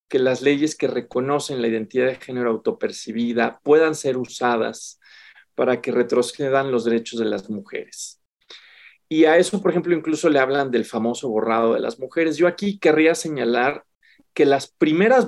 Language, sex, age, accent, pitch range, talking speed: Spanish, male, 40-59, Mexican, 130-170 Hz, 165 wpm